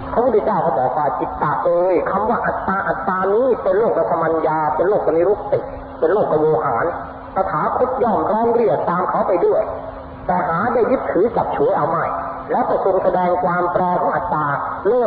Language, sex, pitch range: Thai, male, 185-260 Hz